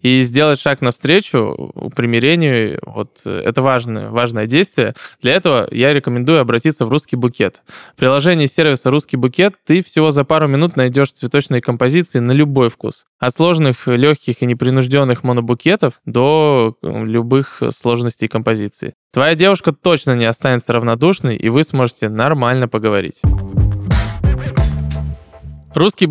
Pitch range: 125-155 Hz